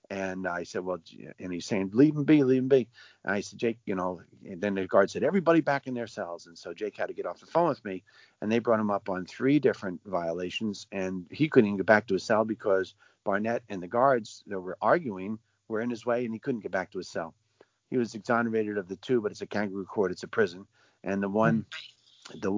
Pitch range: 95-120 Hz